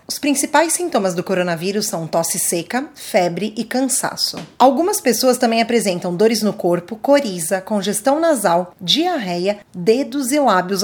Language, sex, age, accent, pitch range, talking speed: Portuguese, female, 20-39, Brazilian, 195-265 Hz, 140 wpm